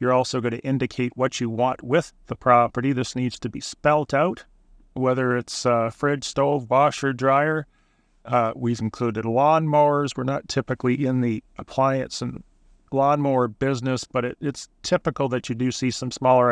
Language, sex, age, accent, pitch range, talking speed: English, male, 30-49, American, 120-140 Hz, 165 wpm